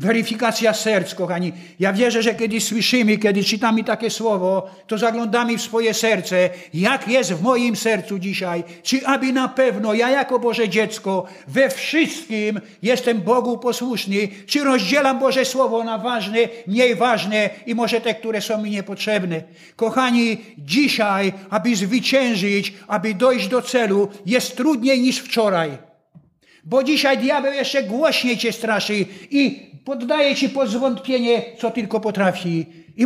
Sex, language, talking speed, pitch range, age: male, Polish, 140 wpm, 200-265 Hz, 50-69